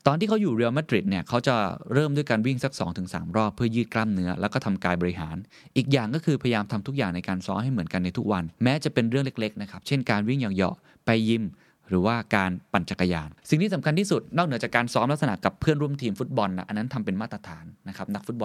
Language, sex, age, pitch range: Thai, male, 20-39, 95-140 Hz